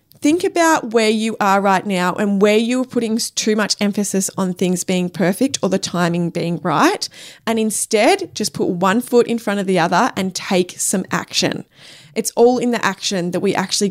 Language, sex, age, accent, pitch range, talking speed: English, female, 20-39, Australian, 185-235 Hz, 200 wpm